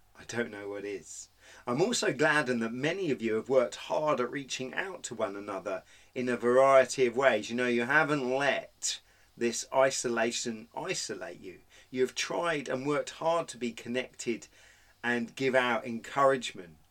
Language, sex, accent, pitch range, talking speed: English, male, British, 105-130 Hz, 170 wpm